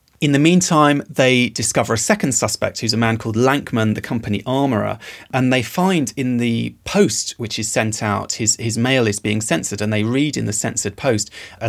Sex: male